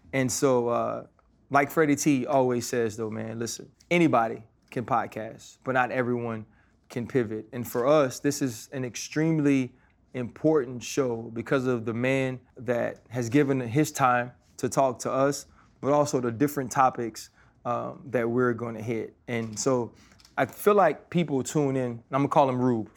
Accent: American